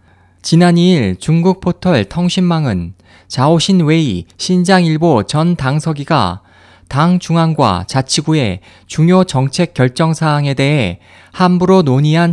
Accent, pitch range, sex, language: native, 100-170 Hz, male, Korean